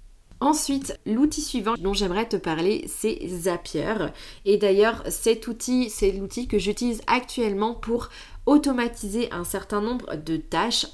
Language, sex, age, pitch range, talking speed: French, female, 20-39, 195-235 Hz, 135 wpm